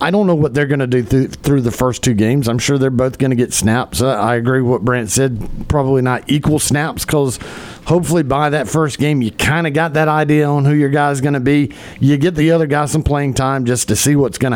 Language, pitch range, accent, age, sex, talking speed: English, 115-145 Hz, American, 50-69, male, 260 wpm